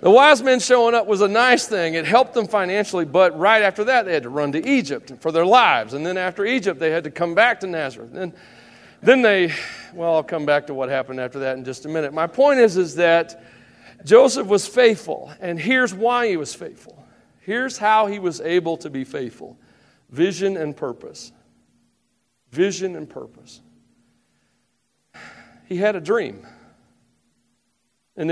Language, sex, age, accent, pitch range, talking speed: English, male, 40-59, American, 155-215 Hz, 180 wpm